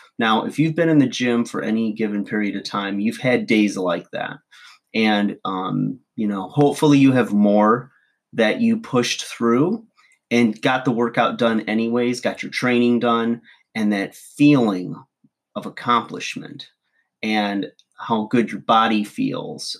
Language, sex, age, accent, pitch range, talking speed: English, male, 30-49, American, 105-125 Hz, 155 wpm